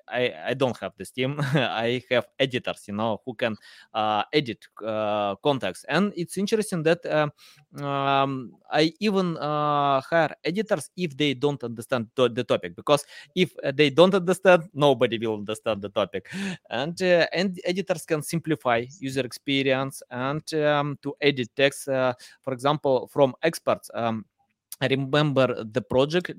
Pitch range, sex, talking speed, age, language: 125-160 Hz, male, 150 wpm, 20-39, English